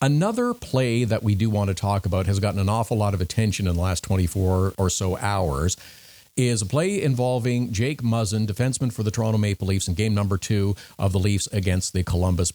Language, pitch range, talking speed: English, 95-125 Hz, 215 wpm